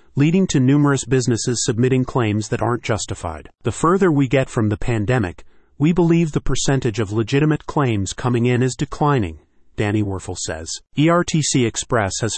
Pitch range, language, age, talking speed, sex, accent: 110-140 Hz, English, 40-59, 160 wpm, male, American